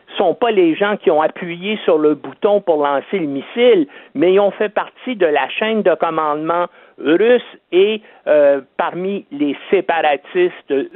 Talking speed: 170 wpm